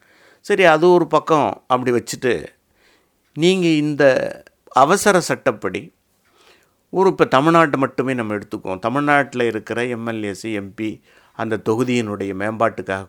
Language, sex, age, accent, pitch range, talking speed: Tamil, male, 50-69, native, 115-150 Hz, 105 wpm